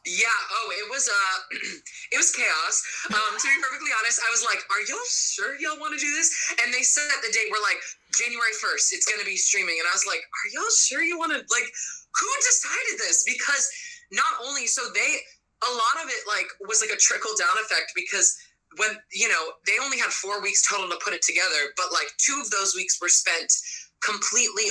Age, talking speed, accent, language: 20-39, 220 wpm, American, English